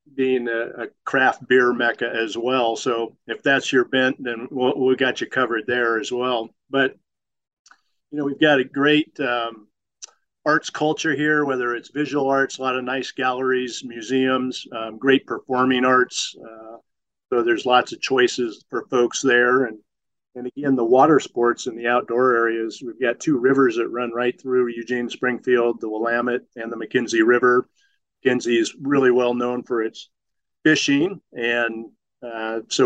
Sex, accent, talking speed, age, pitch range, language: male, American, 170 wpm, 50-69, 120-135 Hz, English